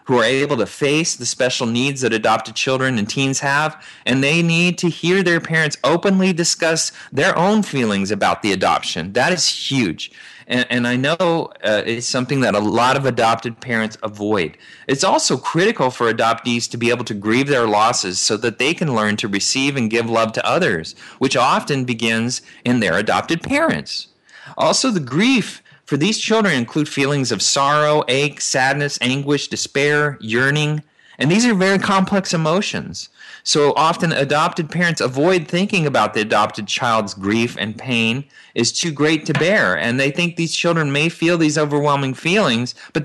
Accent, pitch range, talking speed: American, 120-170 Hz, 175 wpm